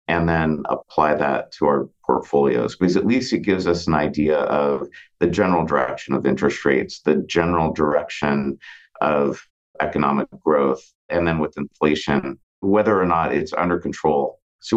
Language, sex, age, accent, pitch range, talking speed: English, male, 50-69, American, 75-90 Hz, 160 wpm